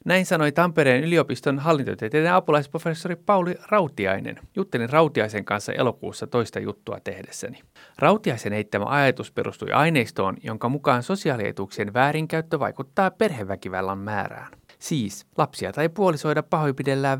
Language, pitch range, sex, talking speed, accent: Finnish, 120-170 Hz, male, 110 wpm, native